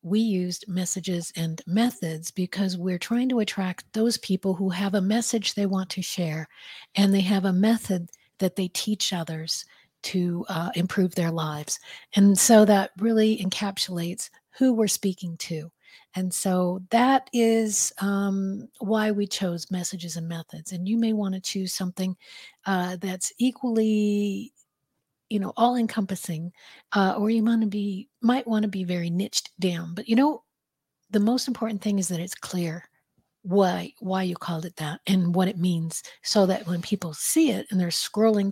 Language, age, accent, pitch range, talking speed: English, 50-69, American, 180-215 Hz, 175 wpm